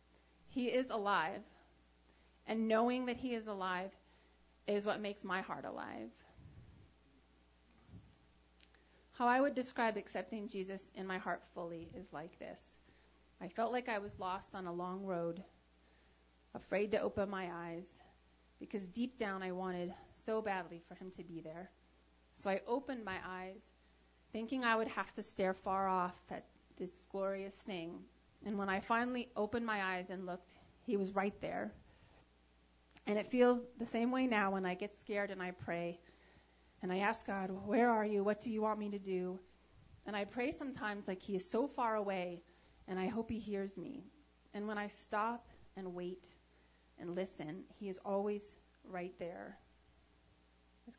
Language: English